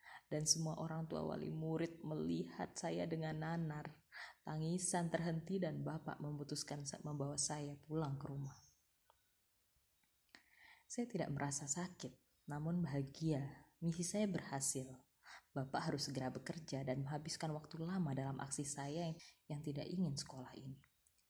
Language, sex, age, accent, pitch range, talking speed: Indonesian, female, 20-39, native, 140-170 Hz, 130 wpm